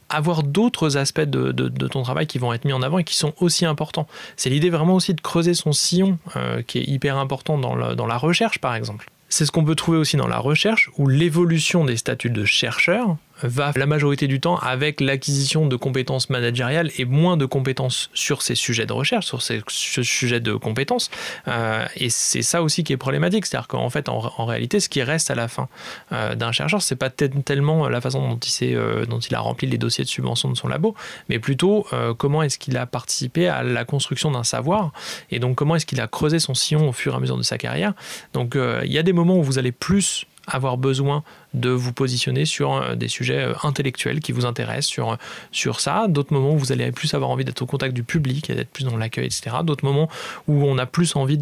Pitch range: 125-160 Hz